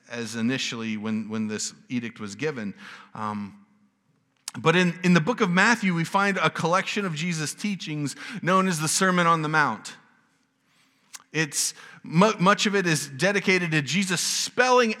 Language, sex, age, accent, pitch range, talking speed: English, male, 30-49, American, 145-195 Hz, 160 wpm